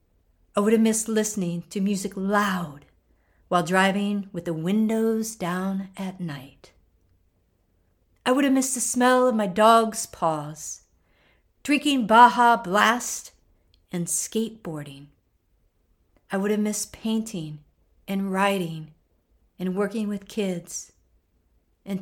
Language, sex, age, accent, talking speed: English, female, 50-69, American, 115 wpm